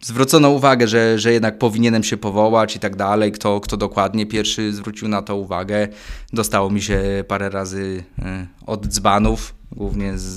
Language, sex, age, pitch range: Polish, male, 20-39, 100-120 Hz